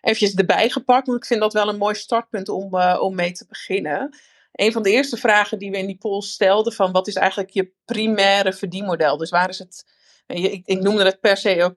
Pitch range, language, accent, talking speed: 180-220 Hz, Dutch, Dutch, 230 wpm